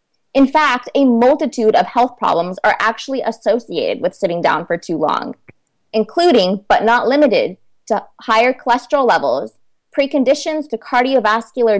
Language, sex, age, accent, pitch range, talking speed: English, female, 20-39, American, 210-295 Hz, 135 wpm